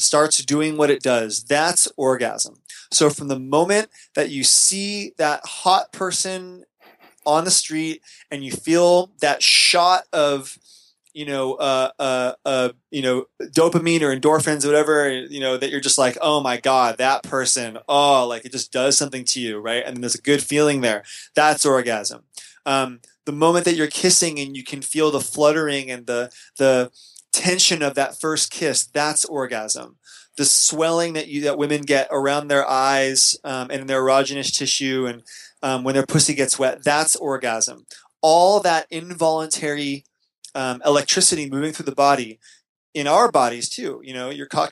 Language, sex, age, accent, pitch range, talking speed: English, male, 20-39, American, 130-155 Hz, 175 wpm